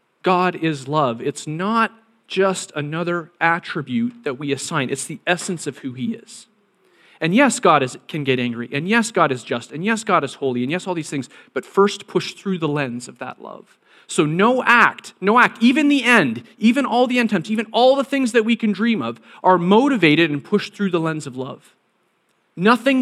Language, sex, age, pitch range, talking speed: English, male, 40-59, 150-220 Hz, 210 wpm